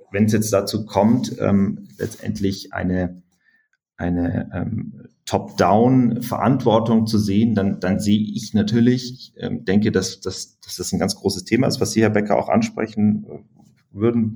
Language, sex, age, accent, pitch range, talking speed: German, male, 30-49, German, 95-110 Hz, 145 wpm